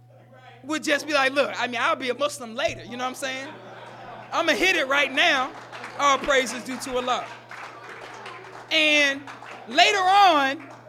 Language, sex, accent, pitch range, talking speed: English, male, American, 235-350 Hz, 180 wpm